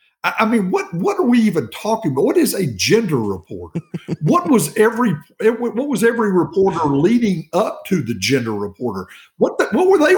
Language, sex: English, male